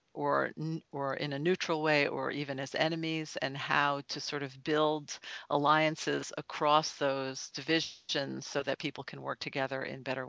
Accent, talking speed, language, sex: American, 165 wpm, English, female